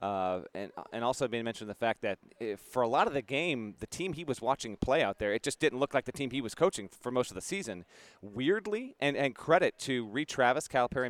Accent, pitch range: American, 115-150 Hz